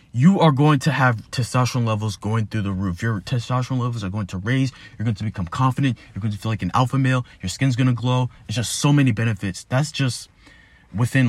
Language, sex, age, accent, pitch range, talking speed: English, male, 20-39, American, 105-130 Hz, 235 wpm